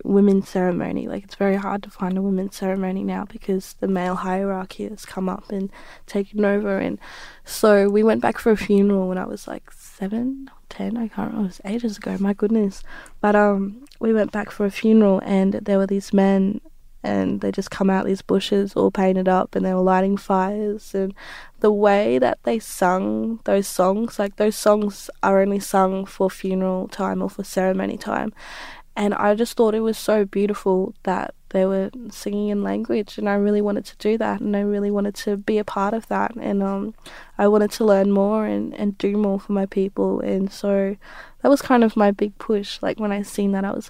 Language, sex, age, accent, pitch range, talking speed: English, female, 20-39, Australian, 195-215 Hz, 215 wpm